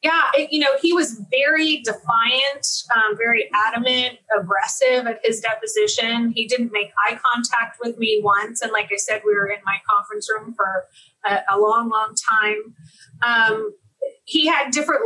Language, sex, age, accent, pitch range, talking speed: English, female, 30-49, American, 210-260 Hz, 165 wpm